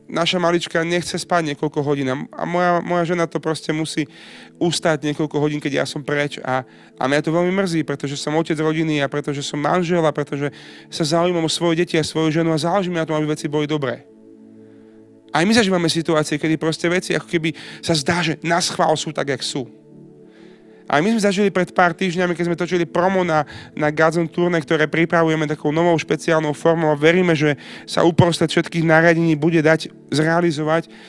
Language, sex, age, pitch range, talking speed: Slovak, male, 30-49, 155-180 Hz, 195 wpm